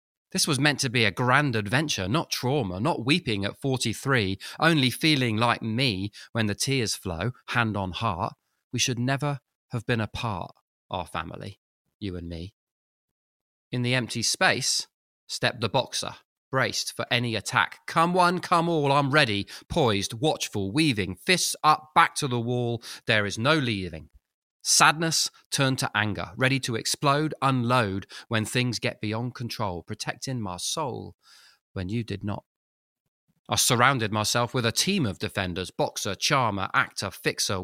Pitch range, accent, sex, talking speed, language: 100-135 Hz, British, male, 155 wpm, English